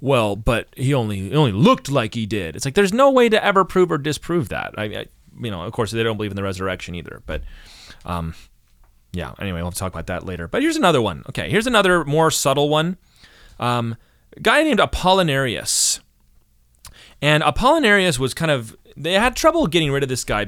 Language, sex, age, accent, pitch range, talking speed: English, male, 30-49, American, 110-165 Hz, 215 wpm